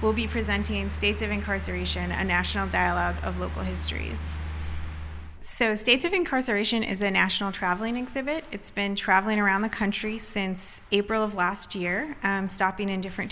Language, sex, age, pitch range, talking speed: English, female, 30-49, 185-210 Hz, 165 wpm